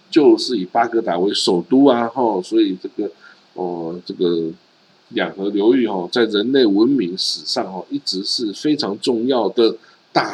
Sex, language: male, Chinese